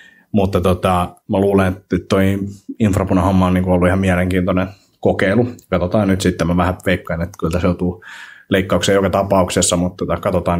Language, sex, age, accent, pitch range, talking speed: Finnish, male, 30-49, native, 90-95 Hz, 155 wpm